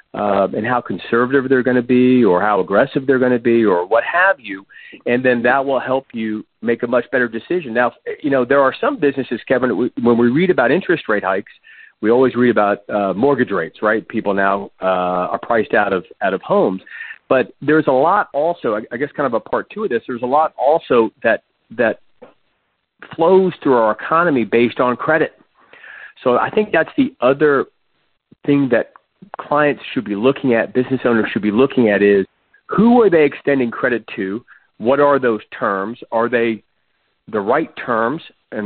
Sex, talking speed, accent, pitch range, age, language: male, 195 wpm, American, 115-150 Hz, 40-59, English